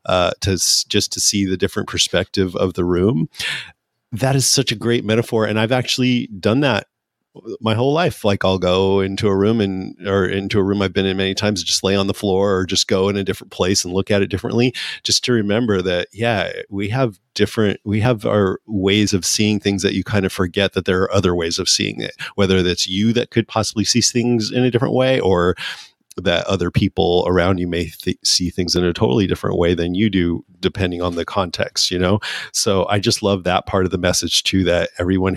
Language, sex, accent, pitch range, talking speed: English, male, American, 90-105 Hz, 225 wpm